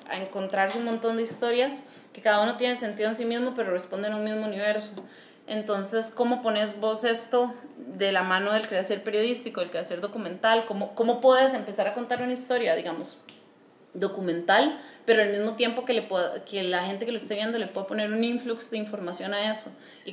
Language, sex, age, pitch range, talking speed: Spanish, female, 30-49, 190-245 Hz, 205 wpm